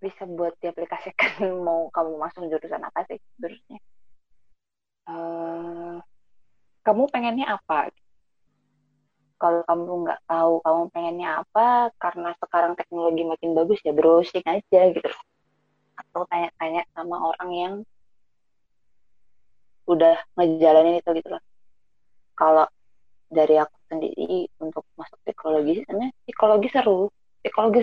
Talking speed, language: 110 wpm, Indonesian